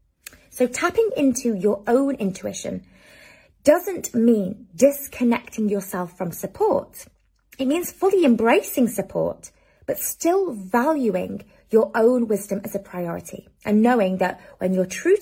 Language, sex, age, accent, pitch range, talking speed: English, female, 20-39, British, 180-250 Hz, 125 wpm